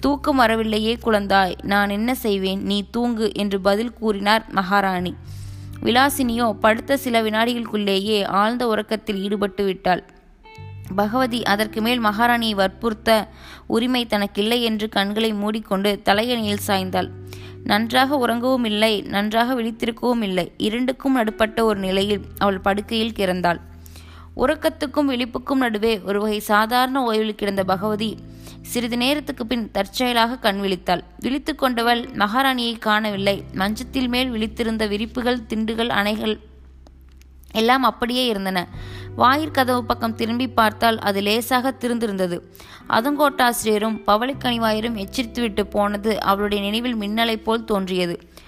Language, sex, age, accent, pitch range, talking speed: Tamil, female, 20-39, native, 200-240 Hz, 110 wpm